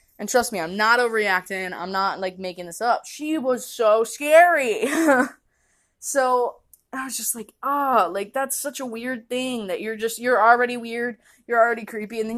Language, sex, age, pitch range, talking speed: English, female, 20-39, 210-265 Hz, 195 wpm